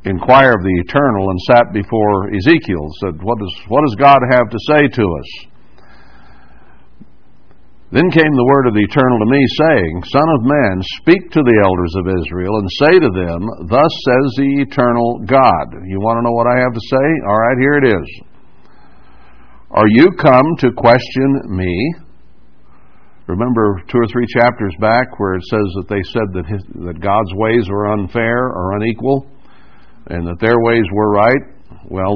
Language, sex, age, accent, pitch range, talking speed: English, male, 60-79, American, 90-125 Hz, 180 wpm